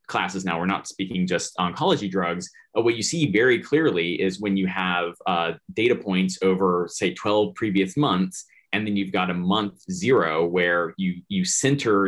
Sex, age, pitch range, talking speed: male, 20-39, 90-105 Hz, 185 wpm